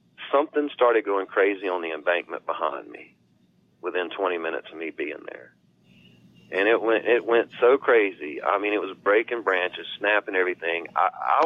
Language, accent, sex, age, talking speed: English, American, male, 40-59, 170 wpm